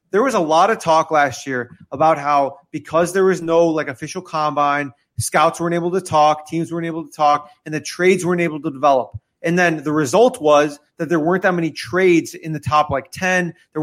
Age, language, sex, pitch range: 30-49, English, male, 150-185 Hz